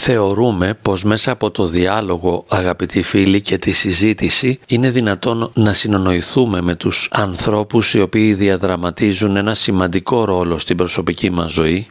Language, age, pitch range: Greek, 40-59, 95-115 Hz